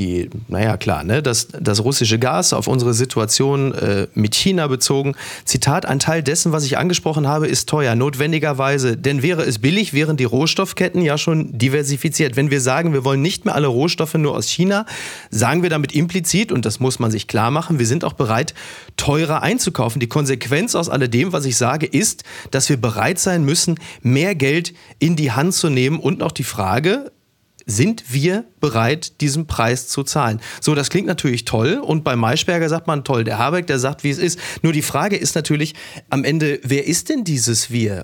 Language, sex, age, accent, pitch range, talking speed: German, male, 30-49, German, 125-160 Hz, 195 wpm